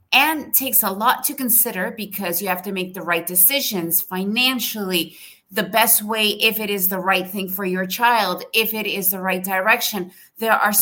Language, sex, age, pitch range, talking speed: English, female, 30-49, 190-240 Hz, 195 wpm